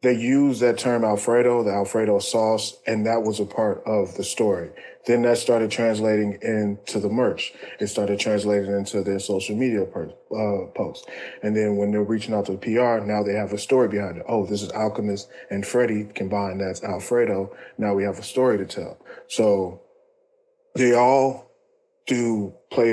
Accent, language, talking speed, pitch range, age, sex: American, English, 180 wpm, 100-115 Hz, 20-39, male